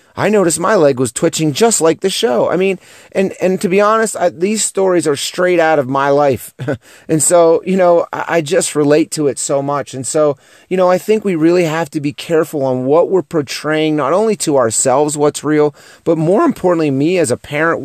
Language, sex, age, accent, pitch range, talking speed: English, male, 30-49, American, 145-195 Hz, 220 wpm